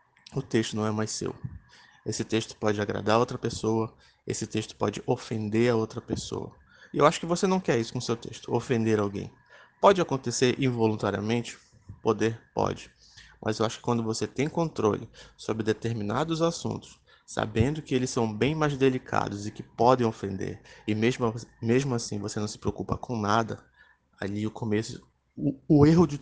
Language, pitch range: Portuguese, 110-130 Hz